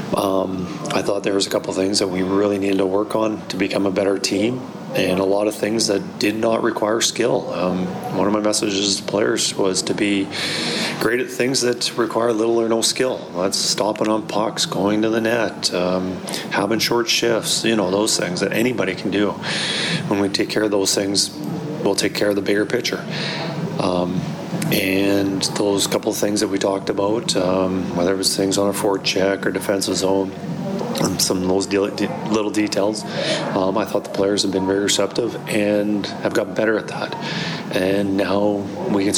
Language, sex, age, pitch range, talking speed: English, male, 30-49, 95-110 Hz, 200 wpm